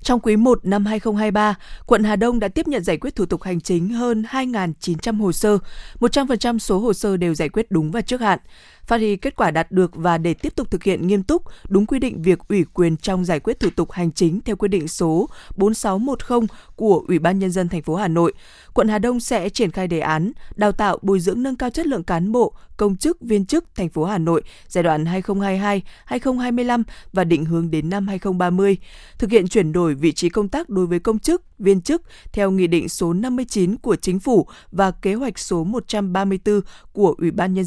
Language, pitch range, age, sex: Vietnamese, 175-220 Hz, 20-39, female